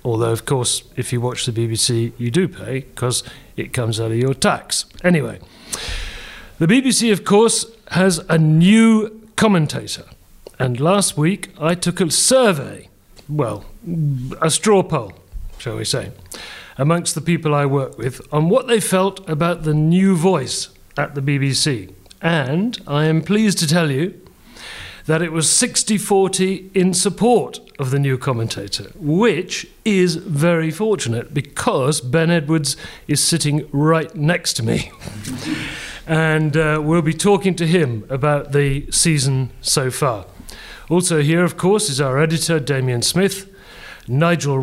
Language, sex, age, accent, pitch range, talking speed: English, male, 40-59, British, 135-175 Hz, 150 wpm